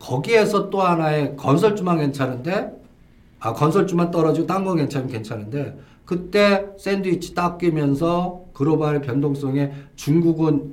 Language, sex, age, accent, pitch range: Korean, male, 50-69, native, 130-180 Hz